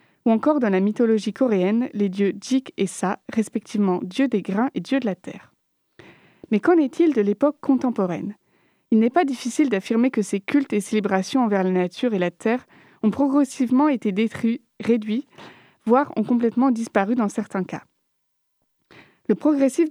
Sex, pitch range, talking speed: female, 200-260 Hz, 170 wpm